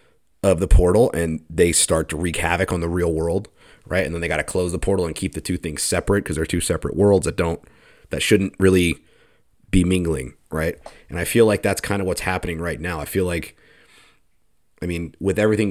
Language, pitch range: English, 85-100 Hz